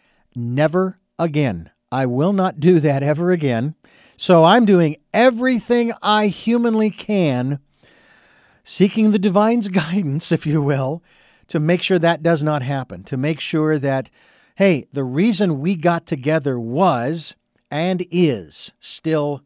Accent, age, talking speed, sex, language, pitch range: American, 50-69, 135 wpm, male, English, 150-200 Hz